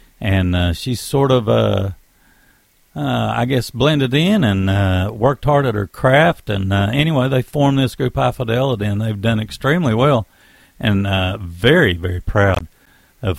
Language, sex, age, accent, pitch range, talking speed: English, male, 60-79, American, 95-135 Hz, 170 wpm